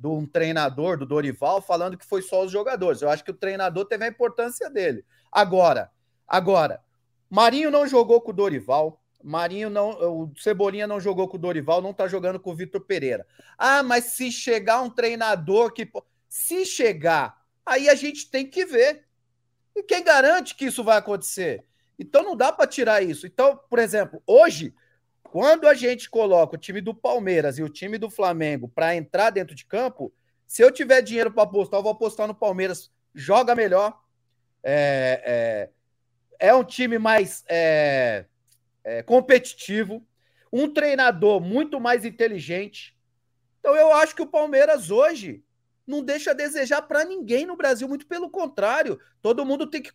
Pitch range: 170-270 Hz